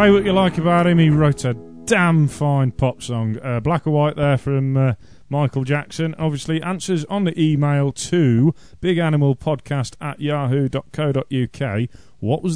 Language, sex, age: English, male, 30-49